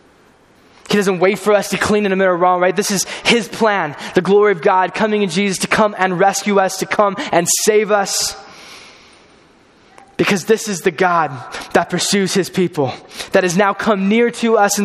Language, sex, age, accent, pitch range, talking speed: English, male, 10-29, American, 180-215 Hz, 200 wpm